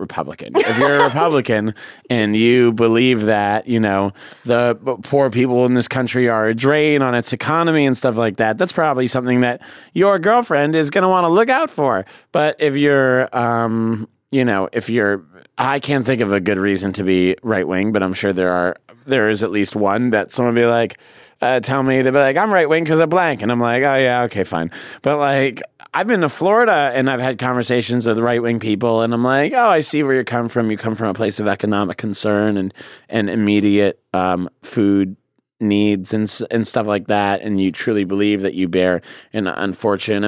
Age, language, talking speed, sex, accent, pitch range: 30-49, English, 215 wpm, male, American, 105-135 Hz